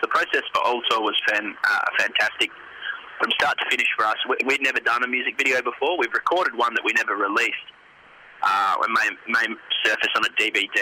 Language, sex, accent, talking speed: English, male, Australian, 205 wpm